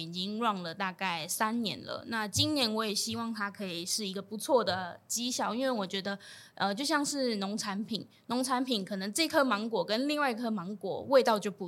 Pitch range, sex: 195-240 Hz, female